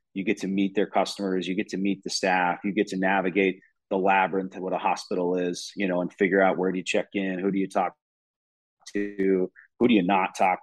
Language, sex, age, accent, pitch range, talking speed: English, male, 30-49, American, 95-100 Hz, 245 wpm